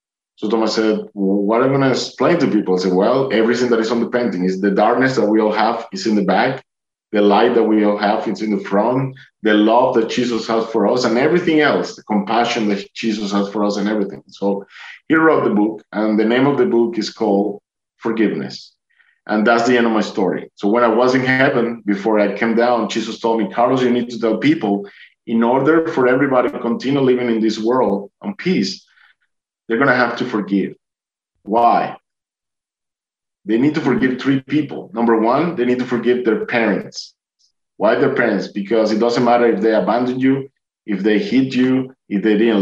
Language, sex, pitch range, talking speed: English, male, 110-130 Hz, 215 wpm